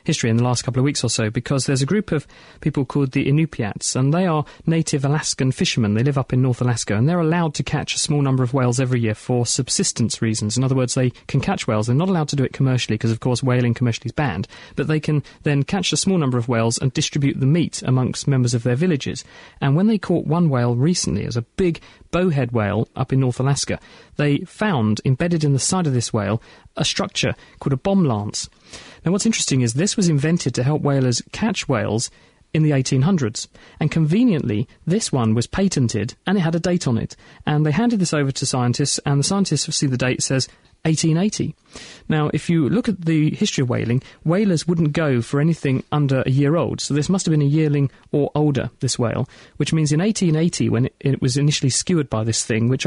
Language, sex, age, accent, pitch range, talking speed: English, male, 40-59, British, 125-160 Hz, 230 wpm